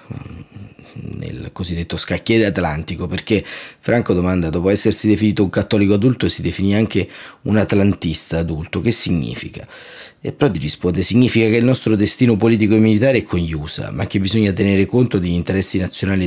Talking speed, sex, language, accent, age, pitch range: 165 wpm, male, Italian, native, 30-49, 90-110 Hz